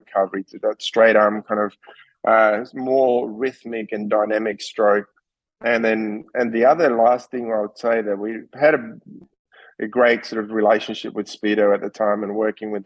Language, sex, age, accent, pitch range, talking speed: English, male, 20-39, Australian, 105-120 Hz, 185 wpm